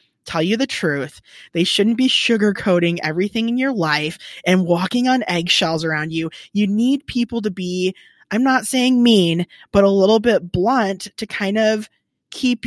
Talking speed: 170 wpm